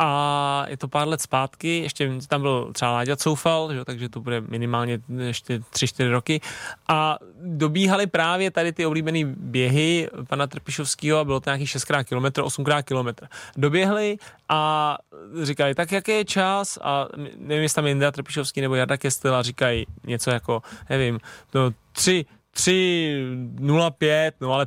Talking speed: 150 wpm